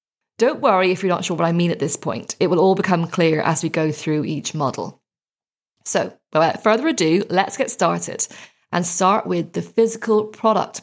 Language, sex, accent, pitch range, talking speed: English, female, British, 175-230 Hz, 200 wpm